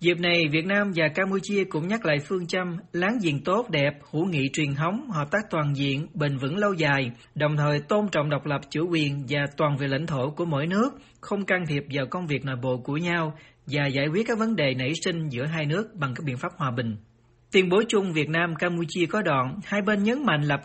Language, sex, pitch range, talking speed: Vietnamese, male, 145-190 Hz, 240 wpm